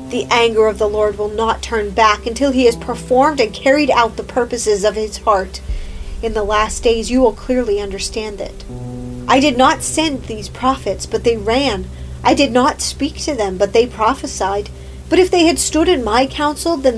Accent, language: American, English